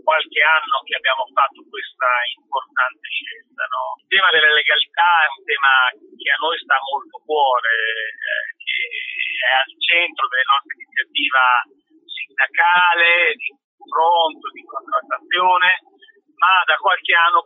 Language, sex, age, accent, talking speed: Italian, male, 40-59, native, 135 wpm